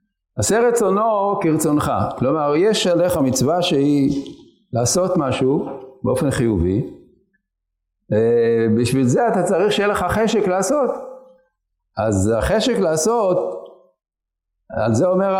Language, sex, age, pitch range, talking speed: Hebrew, male, 50-69, 130-215 Hz, 100 wpm